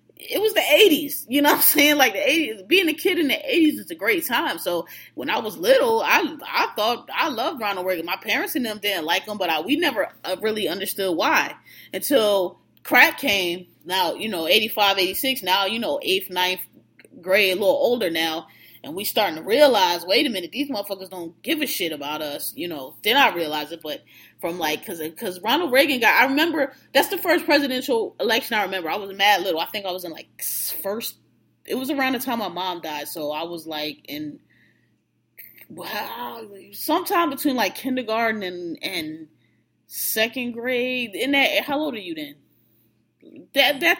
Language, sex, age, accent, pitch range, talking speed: English, female, 20-39, American, 185-290 Hz, 200 wpm